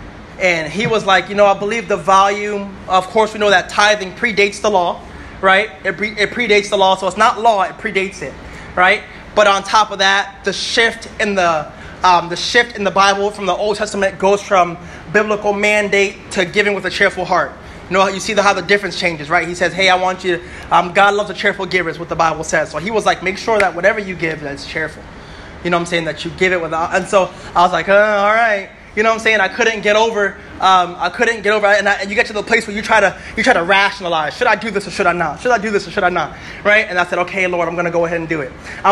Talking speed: 280 wpm